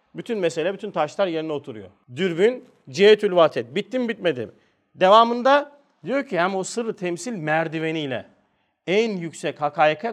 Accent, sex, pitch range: native, male, 160-225 Hz